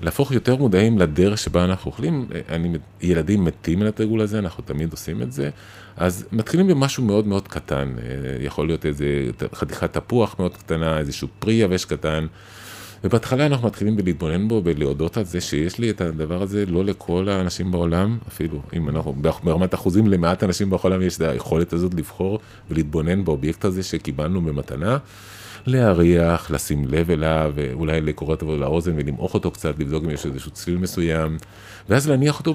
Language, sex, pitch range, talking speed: Hebrew, male, 80-105 Hz, 165 wpm